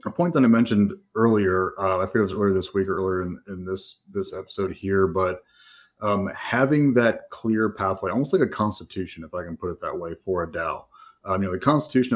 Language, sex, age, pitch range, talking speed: English, male, 30-49, 90-105 Hz, 230 wpm